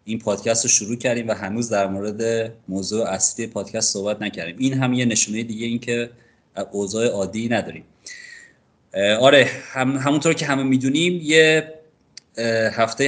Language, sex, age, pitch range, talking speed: Persian, male, 30-49, 105-125 Hz, 140 wpm